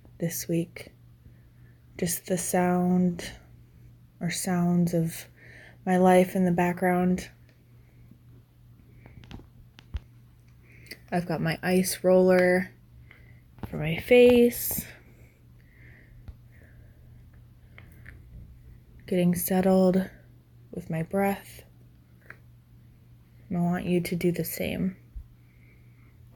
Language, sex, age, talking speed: English, female, 20-39, 75 wpm